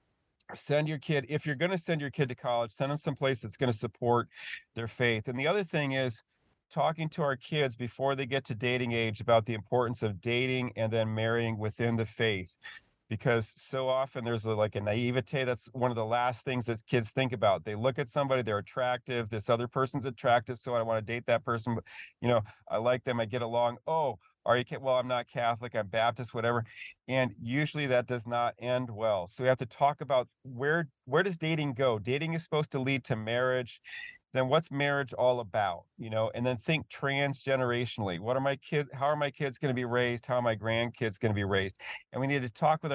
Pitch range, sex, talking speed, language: 115-135 Hz, male, 225 wpm, English